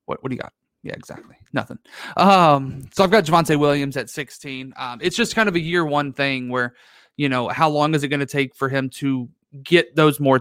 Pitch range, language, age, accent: 130-150 Hz, English, 20-39, American